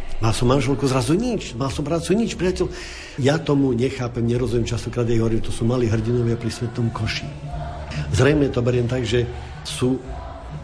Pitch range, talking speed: 105-125 Hz, 175 wpm